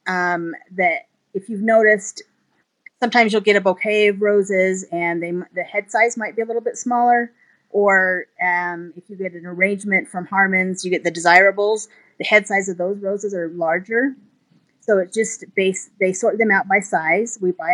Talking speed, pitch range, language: 190 wpm, 175-215 Hz, English